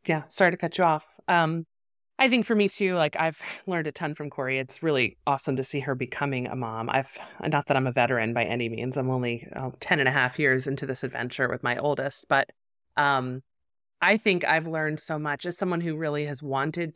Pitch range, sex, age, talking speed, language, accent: 130-170 Hz, female, 30-49, 225 wpm, English, American